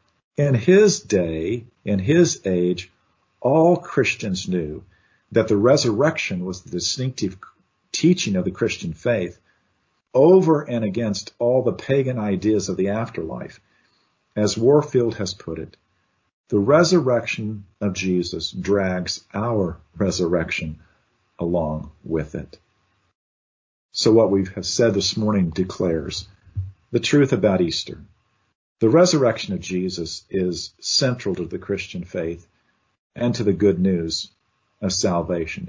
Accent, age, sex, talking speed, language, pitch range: American, 50-69, male, 125 wpm, English, 90-120 Hz